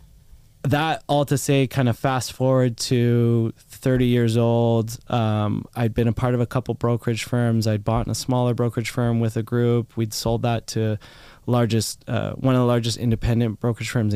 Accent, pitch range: American, 110-125 Hz